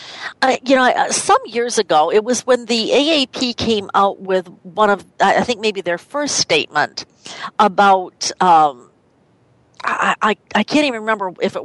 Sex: female